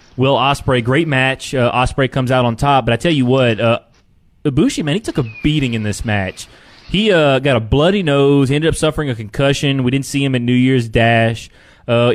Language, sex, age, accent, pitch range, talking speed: English, male, 20-39, American, 115-140 Hz, 220 wpm